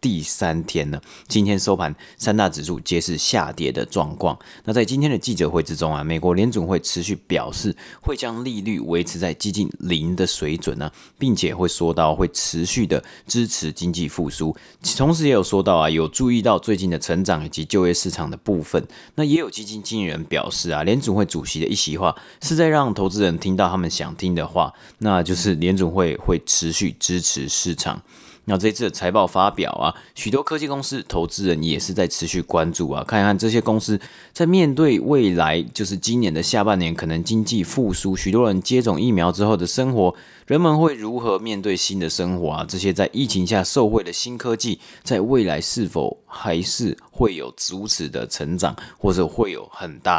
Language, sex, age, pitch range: Chinese, male, 30-49, 85-110 Hz